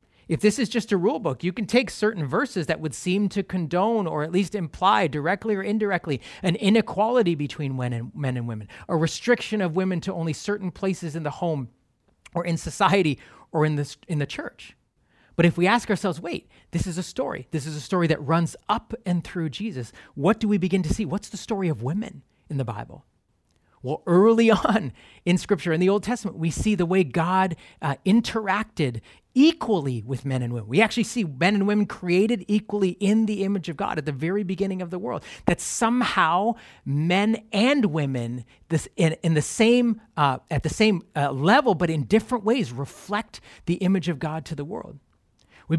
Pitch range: 155-205 Hz